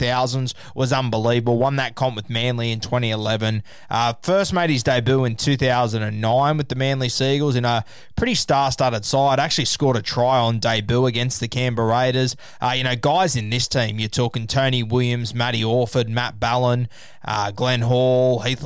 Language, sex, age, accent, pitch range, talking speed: English, male, 20-39, Australian, 115-140 Hz, 175 wpm